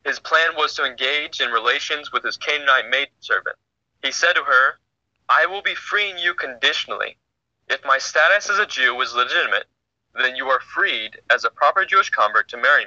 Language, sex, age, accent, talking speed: English, male, 20-39, American, 185 wpm